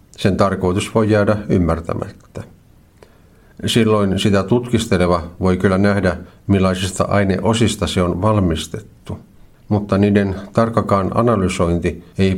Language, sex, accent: Finnish, male, native